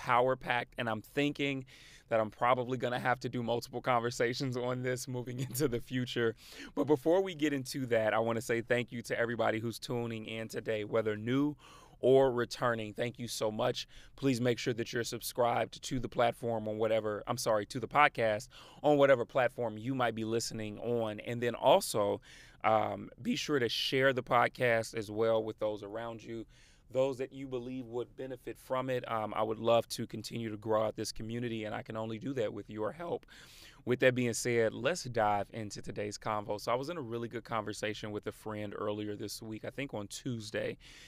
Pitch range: 110-125 Hz